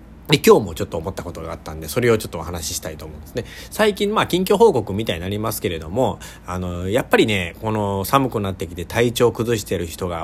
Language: Japanese